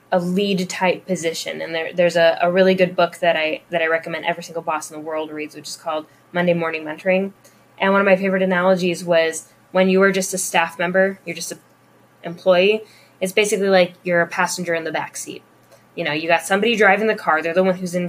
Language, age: English, 10-29